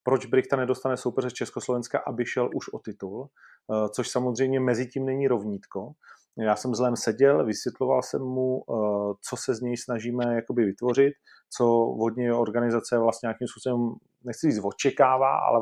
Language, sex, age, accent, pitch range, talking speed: Czech, male, 30-49, native, 115-125 Hz, 150 wpm